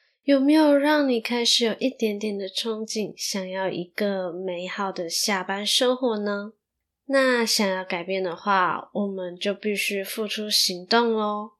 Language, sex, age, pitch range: Chinese, female, 10-29, 190-235 Hz